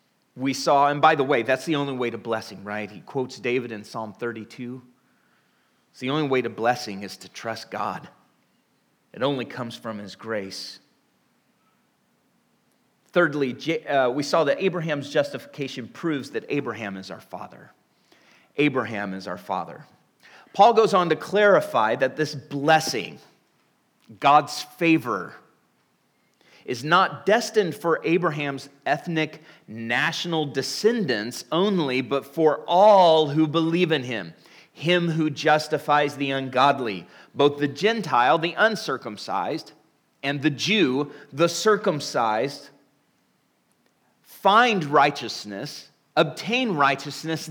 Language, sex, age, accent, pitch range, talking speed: English, male, 30-49, American, 125-165 Hz, 120 wpm